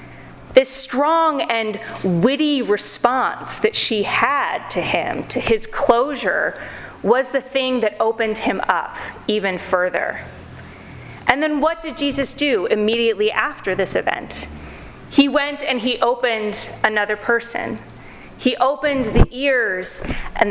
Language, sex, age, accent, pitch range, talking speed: English, female, 30-49, American, 210-275 Hz, 130 wpm